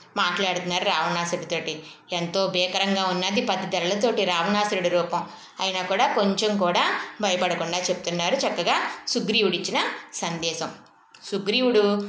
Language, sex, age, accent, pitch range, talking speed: Telugu, female, 20-39, native, 175-220 Hz, 95 wpm